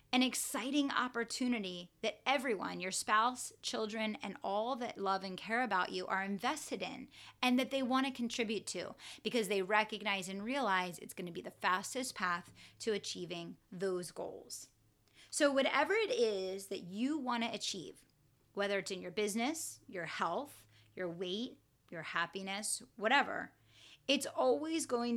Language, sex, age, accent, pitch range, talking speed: English, female, 30-49, American, 200-265 Hz, 150 wpm